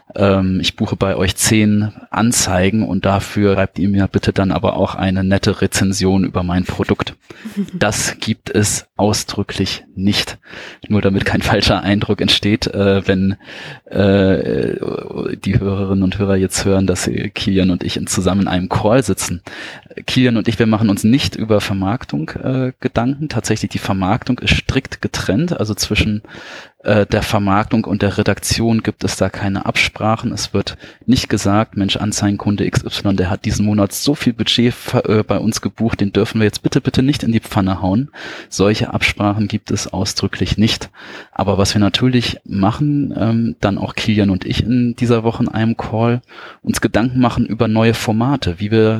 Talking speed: 165 wpm